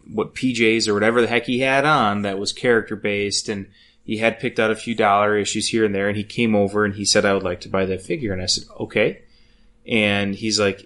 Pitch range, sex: 100-120 Hz, male